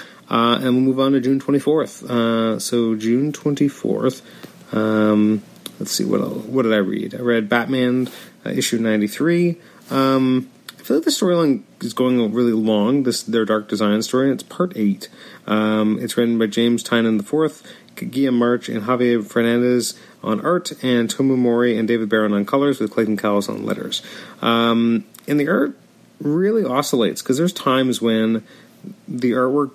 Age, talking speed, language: 30-49, 175 wpm, English